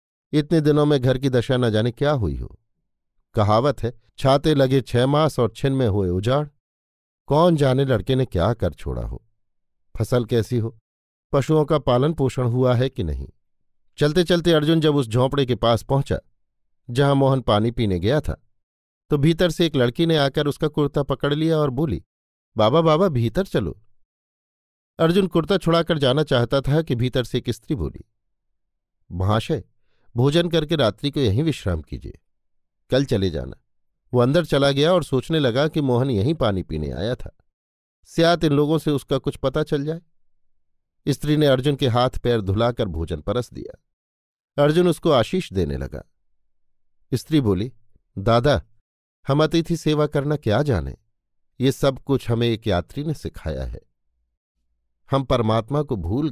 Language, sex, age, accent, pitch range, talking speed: Hindi, male, 50-69, native, 100-150 Hz, 165 wpm